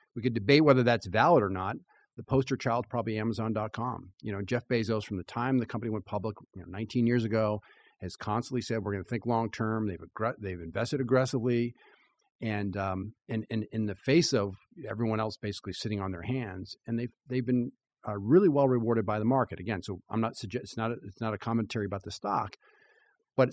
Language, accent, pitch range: English, American, 105-130 Hz